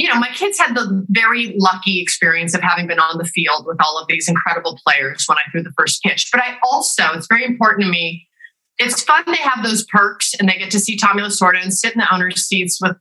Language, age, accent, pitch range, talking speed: English, 30-49, American, 180-230 Hz, 255 wpm